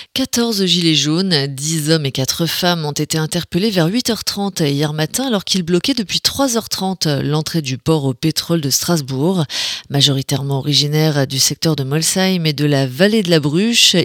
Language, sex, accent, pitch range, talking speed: French, female, French, 145-200 Hz, 170 wpm